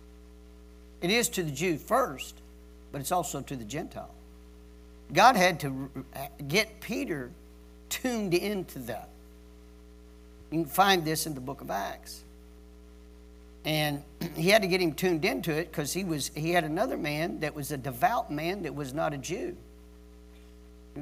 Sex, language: male, English